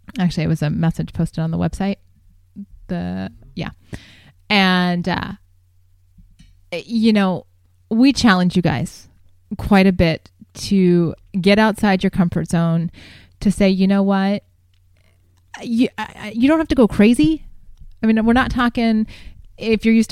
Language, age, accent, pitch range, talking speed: English, 20-39, American, 165-225 Hz, 145 wpm